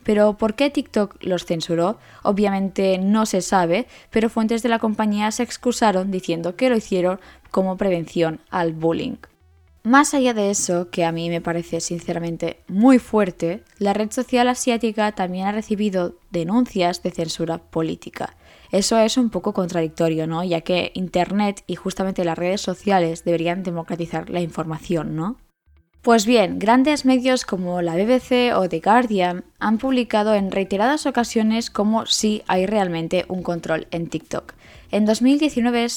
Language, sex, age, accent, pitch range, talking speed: Spanish, female, 10-29, Spanish, 175-230 Hz, 155 wpm